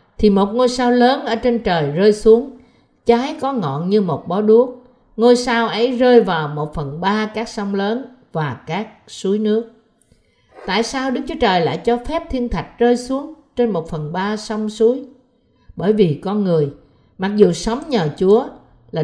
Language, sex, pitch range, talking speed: Vietnamese, female, 165-235 Hz, 190 wpm